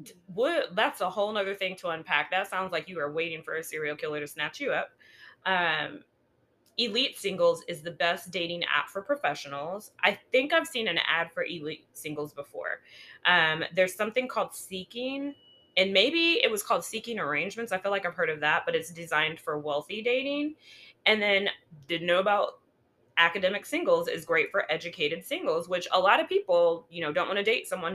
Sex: female